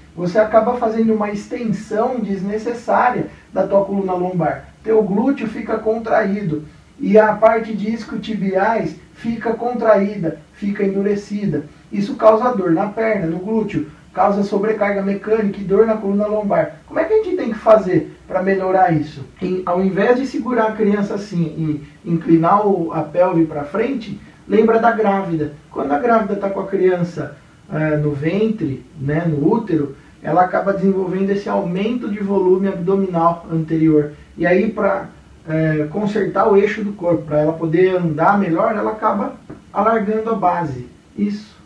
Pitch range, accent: 165-215 Hz, Brazilian